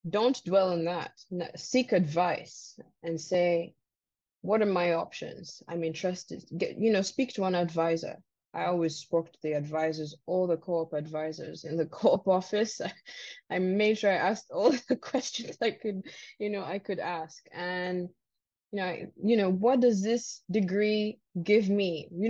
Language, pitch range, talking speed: English, 175-240 Hz, 165 wpm